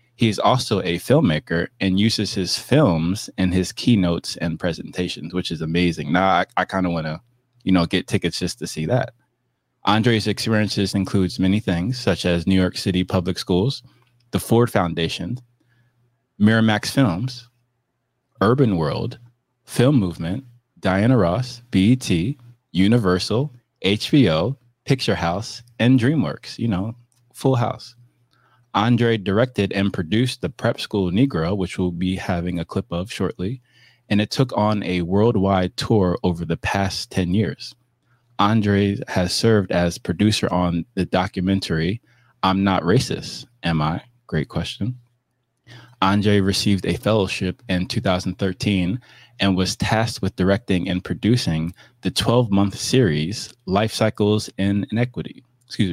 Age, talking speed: 20-39, 135 wpm